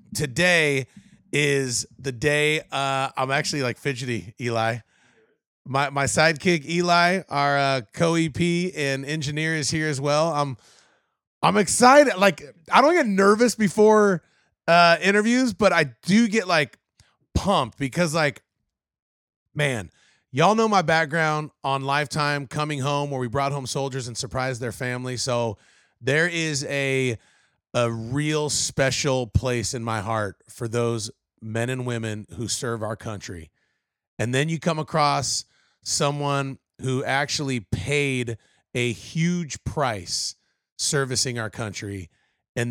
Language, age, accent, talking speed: English, 30-49, American, 135 wpm